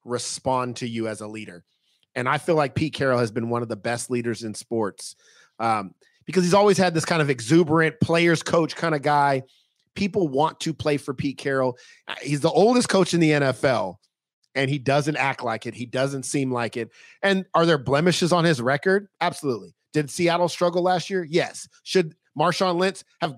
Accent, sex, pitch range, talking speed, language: American, male, 125-165 Hz, 200 wpm, English